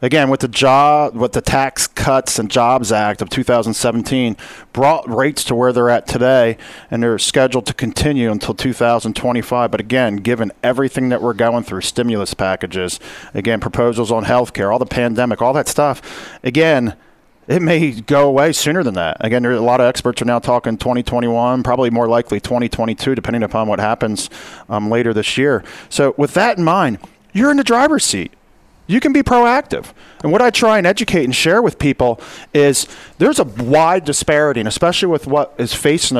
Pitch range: 115-145 Hz